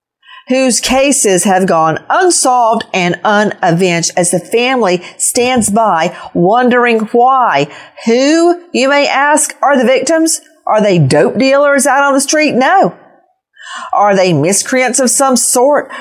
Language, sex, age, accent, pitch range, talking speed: English, female, 50-69, American, 205-275 Hz, 135 wpm